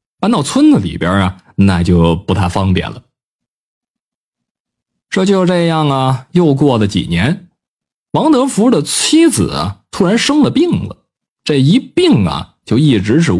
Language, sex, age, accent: Chinese, male, 20-39, native